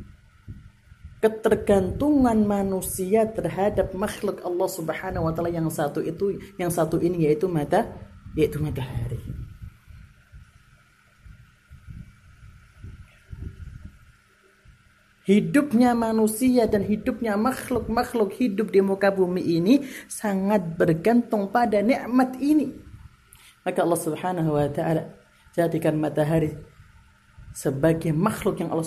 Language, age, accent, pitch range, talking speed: Indonesian, 30-49, native, 160-225 Hz, 90 wpm